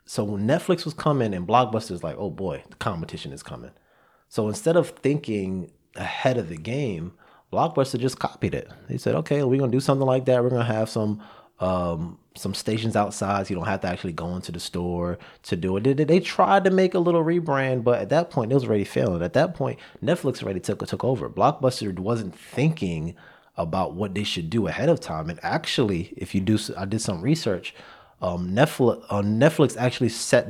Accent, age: American, 30-49